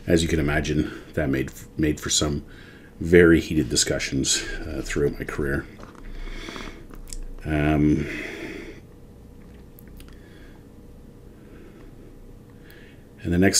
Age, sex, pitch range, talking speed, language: 40-59, male, 75-85 Hz, 90 wpm, English